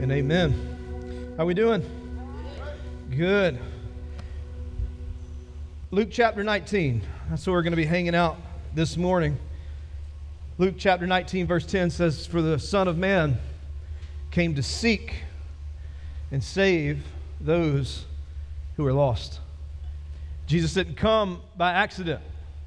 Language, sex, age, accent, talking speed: English, male, 40-59, American, 115 wpm